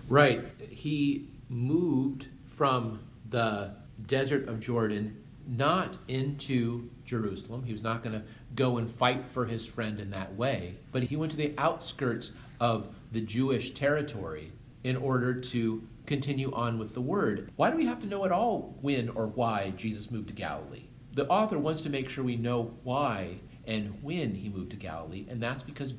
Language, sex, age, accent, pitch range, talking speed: English, male, 40-59, American, 115-155 Hz, 175 wpm